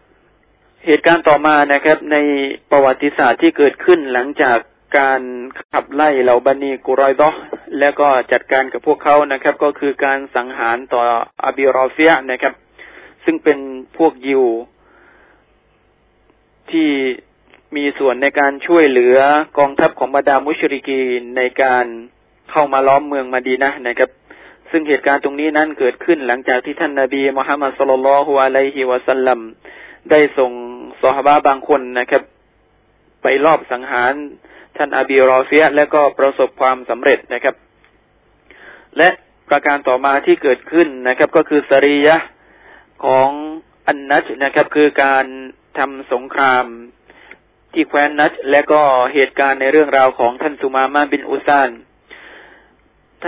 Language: Thai